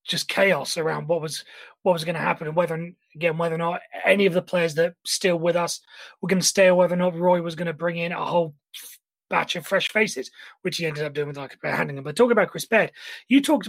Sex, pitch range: male, 175-240 Hz